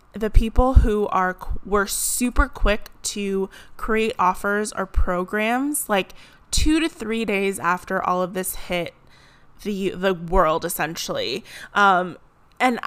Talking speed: 130 wpm